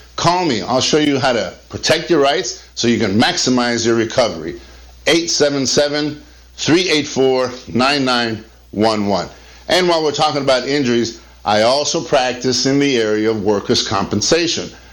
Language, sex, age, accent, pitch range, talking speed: English, male, 50-69, American, 110-145 Hz, 130 wpm